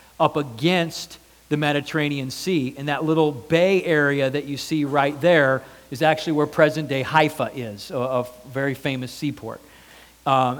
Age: 40-59